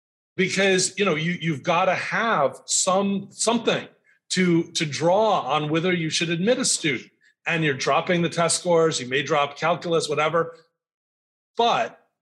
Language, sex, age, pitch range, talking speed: English, male, 40-59, 160-205 Hz, 155 wpm